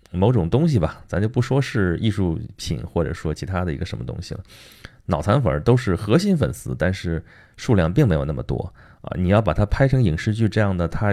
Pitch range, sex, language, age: 85-110 Hz, male, Chinese, 30-49